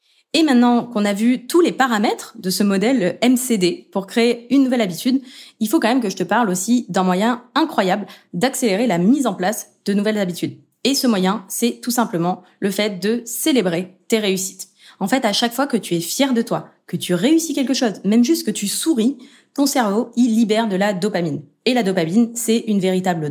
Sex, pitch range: female, 190-250 Hz